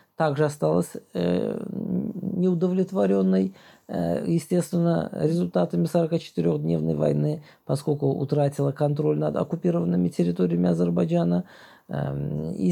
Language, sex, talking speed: Russian, male, 70 wpm